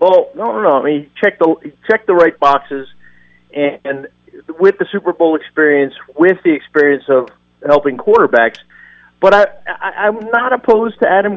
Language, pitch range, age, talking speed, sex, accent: English, 125-185 Hz, 40-59, 175 wpm, male, American